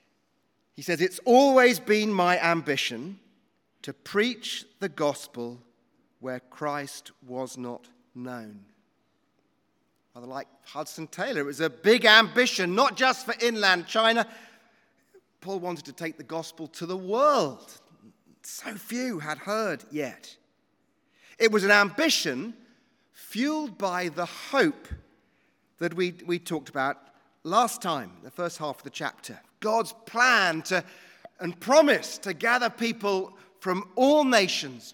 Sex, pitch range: male, 145-225 Hz